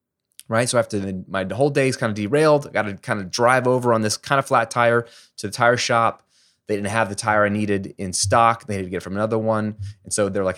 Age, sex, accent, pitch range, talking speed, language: 20-39, male, American, 100-130 Hz, 270 wpm, English